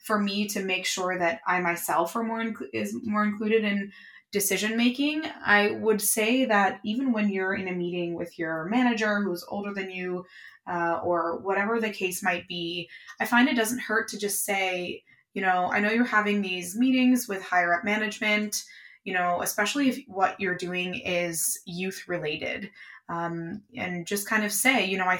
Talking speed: 190 wpm